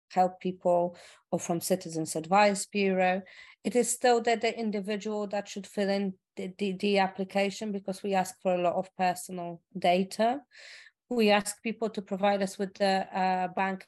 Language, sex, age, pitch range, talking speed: English, female, 30-49, 170-195 Hz, 175 wpm